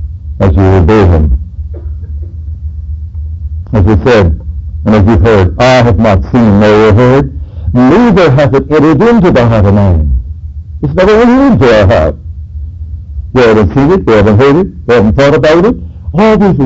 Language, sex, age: English, male, 60-79